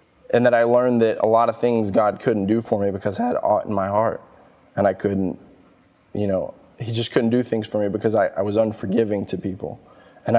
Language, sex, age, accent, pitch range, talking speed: English, male, 20-39, American, 105-115 Hz, 235 wpm